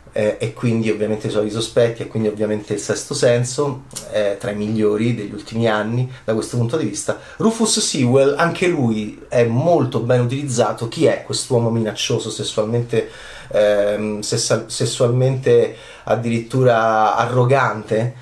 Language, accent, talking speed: Italian, native, 140 wpm